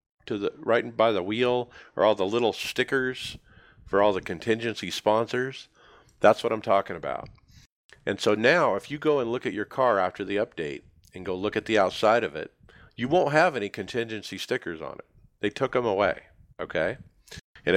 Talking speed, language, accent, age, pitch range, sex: 195 wpm, English, American, 50-69, 95-120 Hz, male